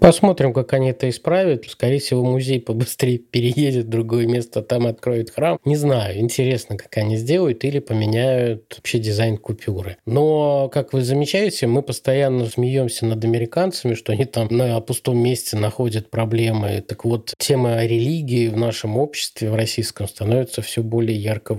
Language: Russian